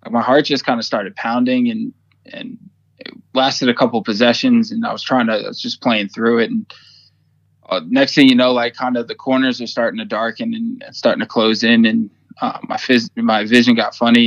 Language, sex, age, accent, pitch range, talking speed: English, male, 20-39, American, 115-195 Hz, 225 wpm